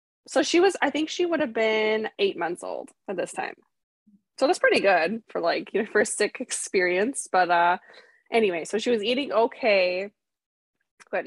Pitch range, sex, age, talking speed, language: 190-280 Hz, female, 20-39, 190 wpm, English